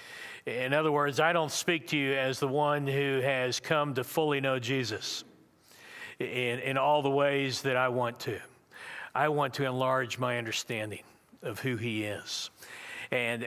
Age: 50-69